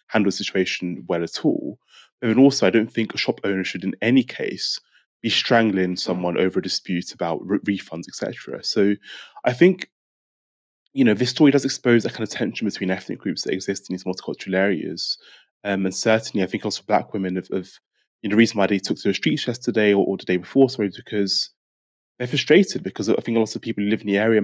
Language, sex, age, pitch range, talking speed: English, male, 20-39, 95-115 Hz, 225 wpm